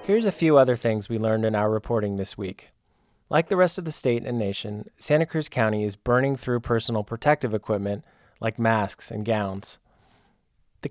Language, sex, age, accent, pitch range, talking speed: English, male, 20-39, American, 110-135 Hz, 185 wpm